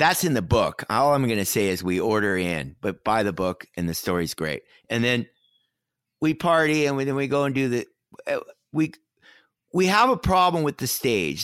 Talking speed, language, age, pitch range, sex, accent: 215 wpm, English, 50-69, 95-150 Hz, male, American